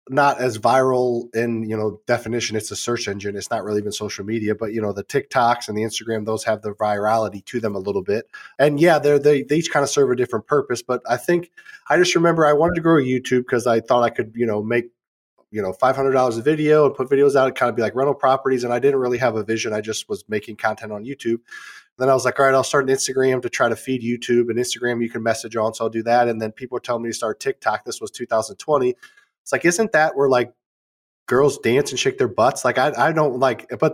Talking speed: 270 wpm